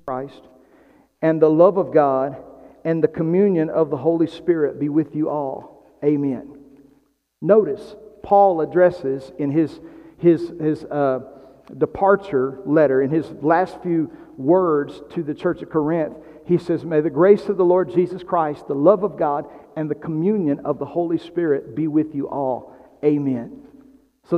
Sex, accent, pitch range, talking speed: male, American, 145-180 Hz, 160 wpm